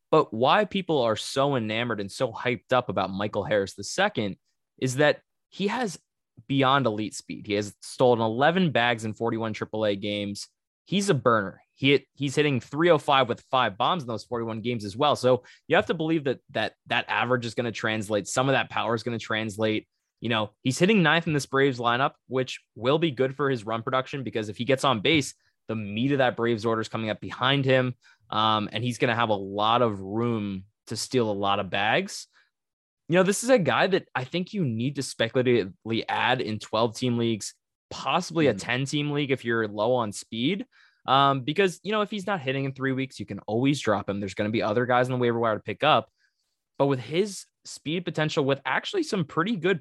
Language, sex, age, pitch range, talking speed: English, male, 20-39, 110-150 Hz, 220 wpm